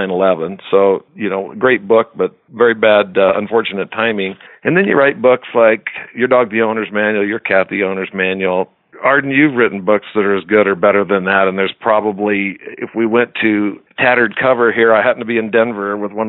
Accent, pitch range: American, 95-115 Hz